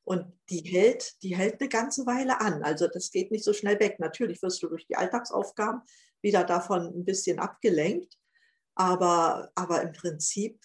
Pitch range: 180-250 Hz